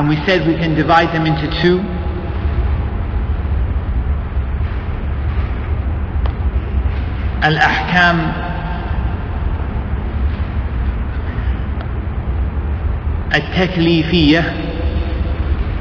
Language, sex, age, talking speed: English, male, 50-69, 40 wpm